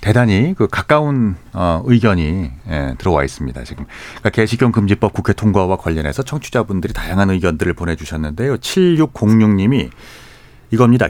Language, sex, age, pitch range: Korean, male, 40-59, 90-125 Hz